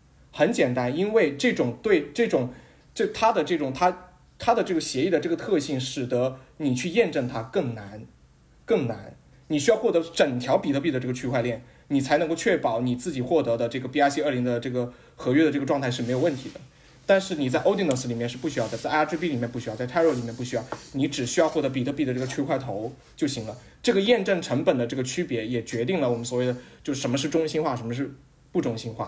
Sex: male